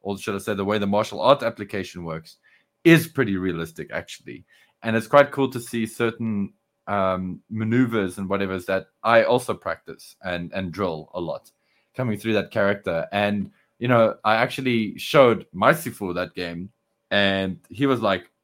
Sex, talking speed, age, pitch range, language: male, 175 wpm, 20-39, 100-125 Hz, English